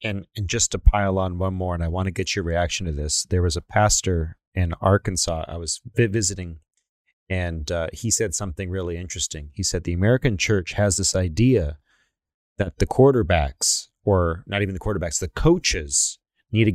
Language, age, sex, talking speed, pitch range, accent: English, 30-49, male, 190 wpm, 90-115 Hz, American